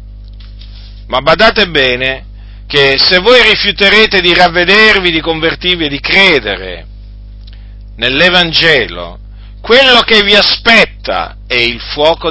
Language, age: Italian, 40-59